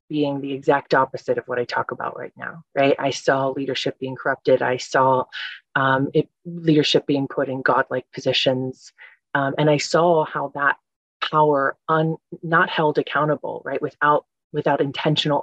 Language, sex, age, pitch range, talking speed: English, female, 30-49, 135-165 Hz, 165 wpm